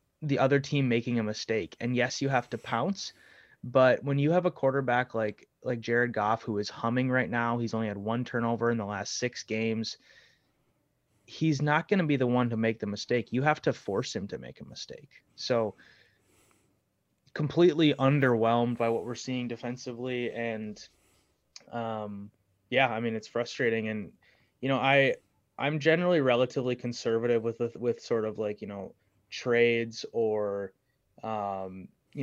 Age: 20-39